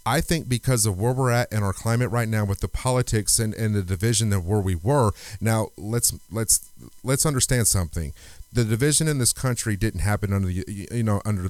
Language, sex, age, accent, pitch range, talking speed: English, male, 40-59, American, 100-125 Hz, 215 wpm